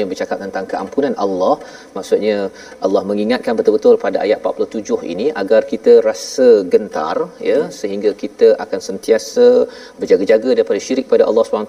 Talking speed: 145 wpm